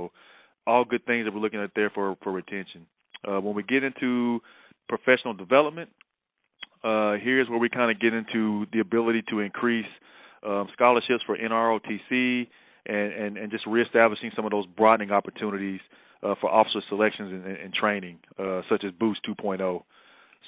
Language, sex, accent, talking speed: English, male, American, 165 wpm